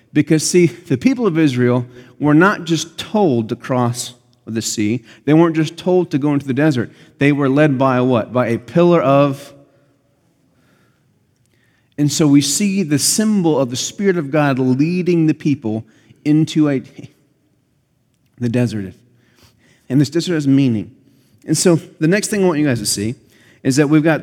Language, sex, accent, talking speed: English, male, American, 175 wpm